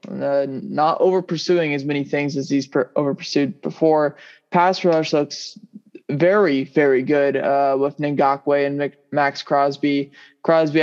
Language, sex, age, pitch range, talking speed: English, male, 20-39, 145-165 Hz, 125 wpm